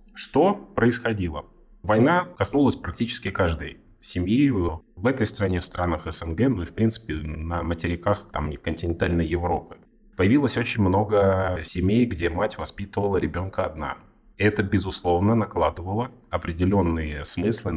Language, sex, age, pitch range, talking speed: Russian, male, 30-49, 85-110 Hz, 125 wpm